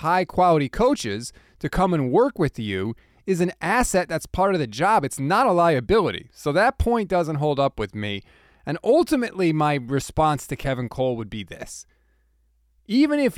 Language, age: English, 20-39